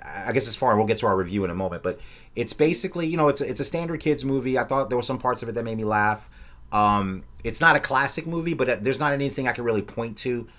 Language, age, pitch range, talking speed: English, 30-49, 85-110 Hz, 290 wpm